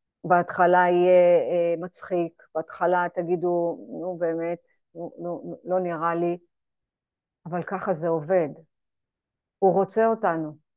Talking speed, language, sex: 105 wpm, Hebrew, female